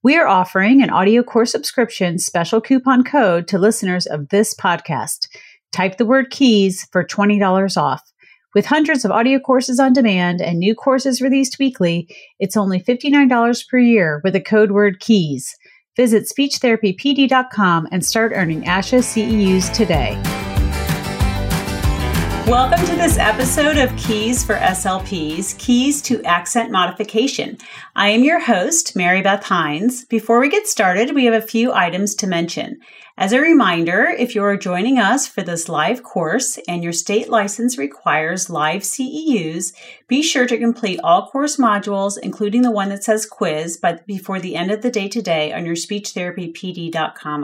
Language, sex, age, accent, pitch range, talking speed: English, female, 40-59, American, 180-245 Hz, 160 wpm